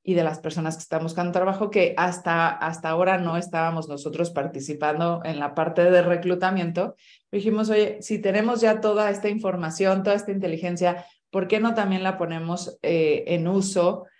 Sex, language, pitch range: female, Spanish, 170-195 Hz